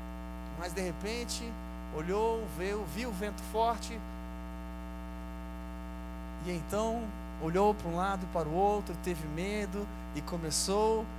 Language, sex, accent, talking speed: Portuguese, male, Brazilian, 125 wpm